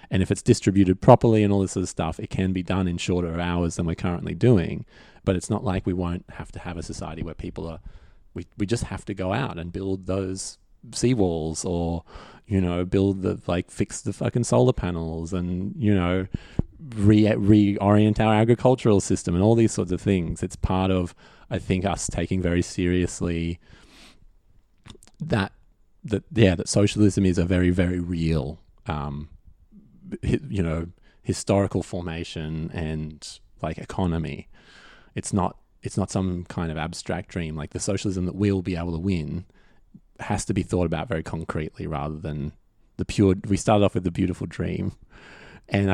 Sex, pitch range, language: male, 85-100 Hz, English